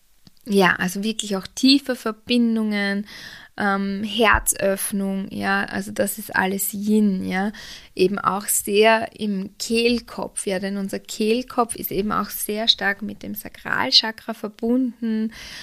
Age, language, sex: 20-39, German, female